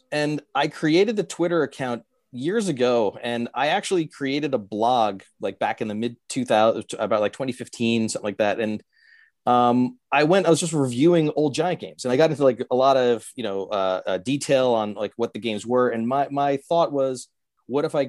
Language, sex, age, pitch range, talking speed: English, male, 30-49, 115-140 Hz, 215 wpm